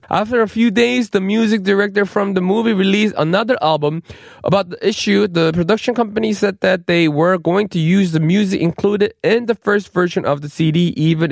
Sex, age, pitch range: male, 20-39, 170-225 Hz